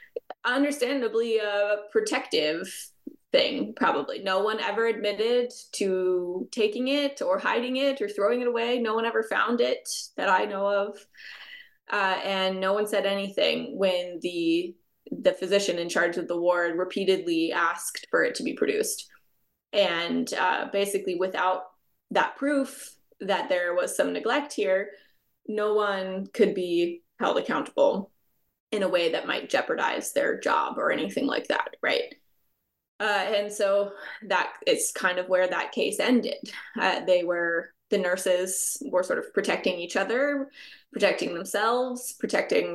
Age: 20-39